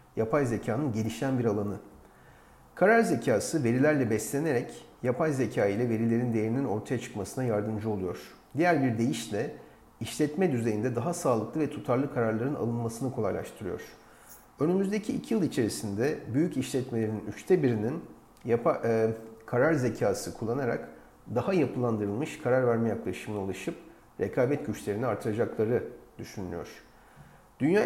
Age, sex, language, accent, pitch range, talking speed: 40-59, male, Turkish, native, 110-140 Hz, 115 wpm